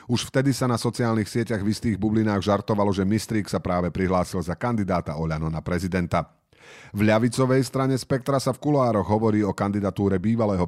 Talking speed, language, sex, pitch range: 175 wpm, Slovak, male, 95-120 Hz